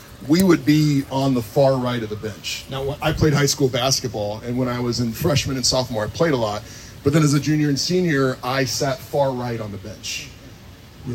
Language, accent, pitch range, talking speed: English, American, 115-150 Hz, 230 wpm